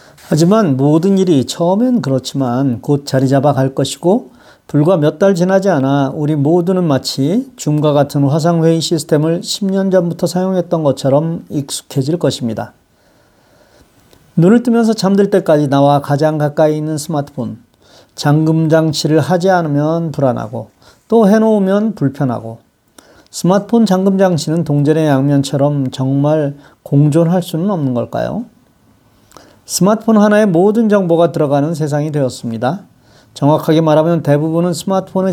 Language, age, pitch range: Korean, 40-59, 140-180 Hz